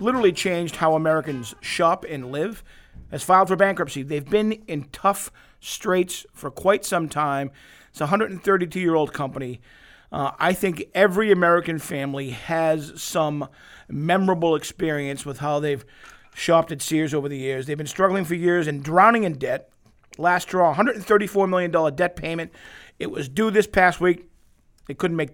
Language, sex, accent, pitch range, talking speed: English, male, American, 150-190 Hz, 160 wpm